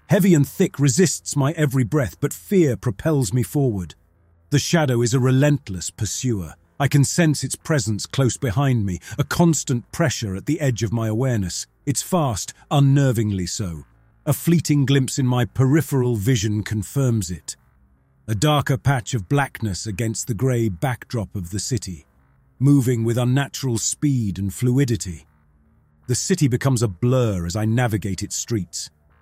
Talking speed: 155 wpm